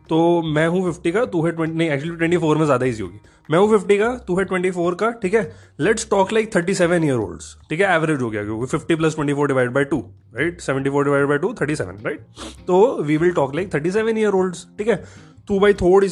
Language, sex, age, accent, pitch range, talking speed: Hindi, male, 20-39, native, 140-210 Hz, 195 wpm